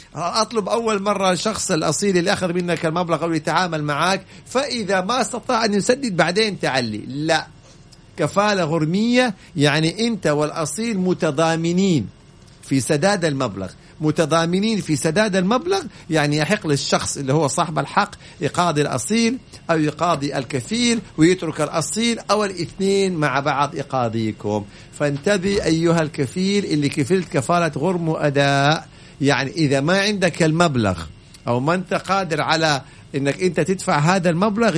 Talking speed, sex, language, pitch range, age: 130 wpm, male, Arabic, 145-195 Hz, 50-69